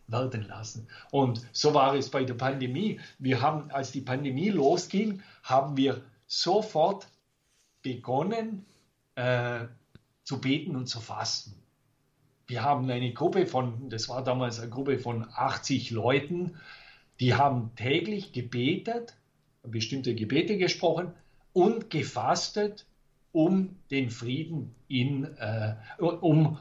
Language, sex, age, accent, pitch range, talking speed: German, male, 50-69, German, 125-150 Hz, 120 wpm